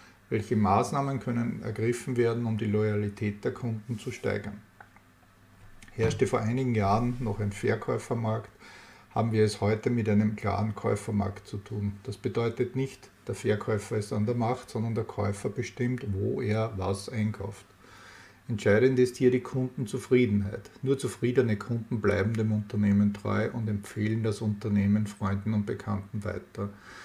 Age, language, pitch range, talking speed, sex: 50-69, German, 100-120 Hz, 145 wpm, male